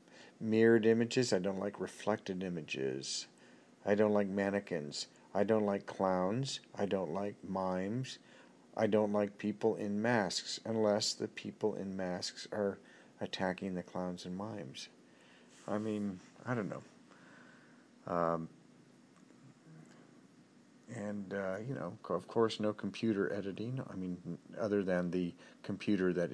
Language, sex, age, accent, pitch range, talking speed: English, male, 50-69, American, 95-115 Hz, 130 wpm